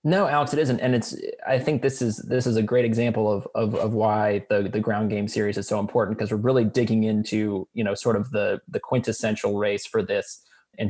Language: English